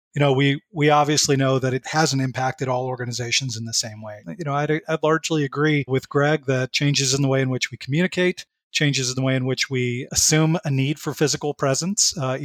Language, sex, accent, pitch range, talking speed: English, male, American, 125-140 Hz, 225 wpm